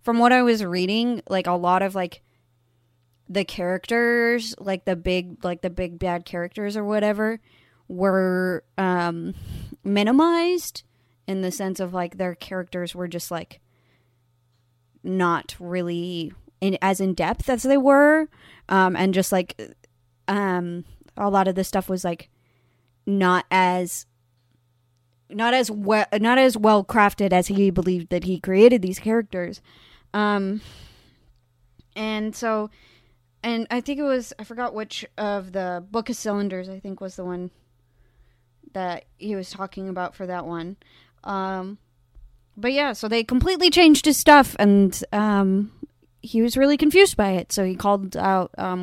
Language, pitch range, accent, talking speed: English, 175-220 Hz, American, 150 wpm